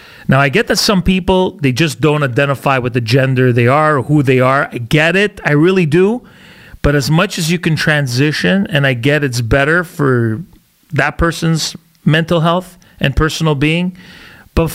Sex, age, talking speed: male, 40-59, 185 wpm